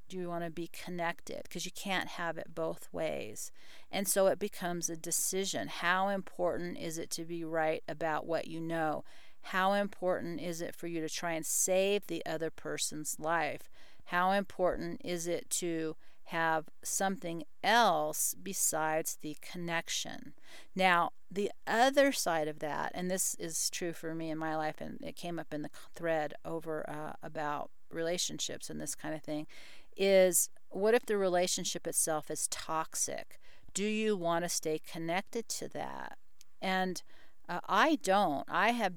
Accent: American